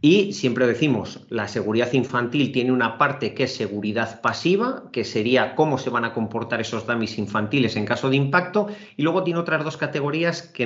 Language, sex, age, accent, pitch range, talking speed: Spanish, male, 40-59, Spanish, 115-170 Hz, 190 wpm